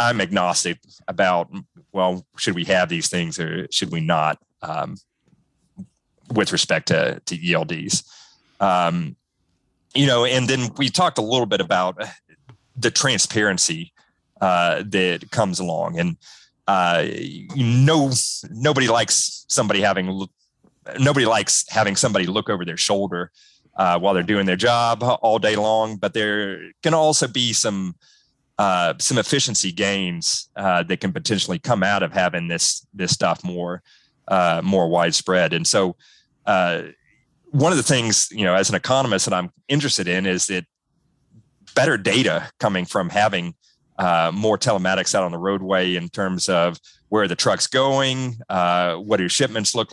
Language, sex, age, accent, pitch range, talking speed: English, male, 30-49, American, 90-130 Hz, 155 wpm